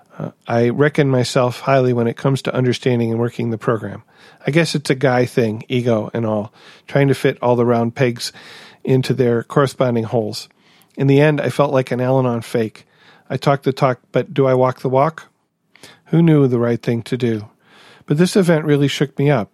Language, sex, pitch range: English, male, 120-140 Hz